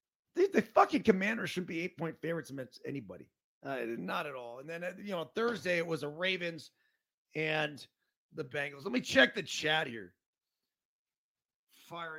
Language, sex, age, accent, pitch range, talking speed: English, male, 40-59, American, 155-240 Hz, 165 wpm